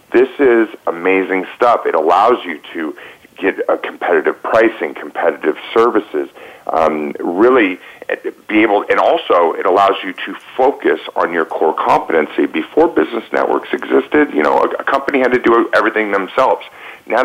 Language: English